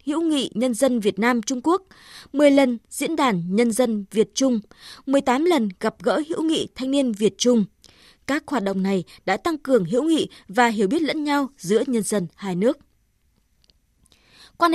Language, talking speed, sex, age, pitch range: Vietnamese, 185 wpm, female, 20-39, 215-295 Hz